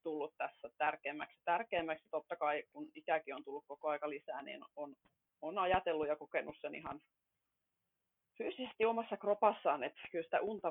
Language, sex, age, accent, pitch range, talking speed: Finnish, female, 30-49, native, 150-170 Hz, 155 wpm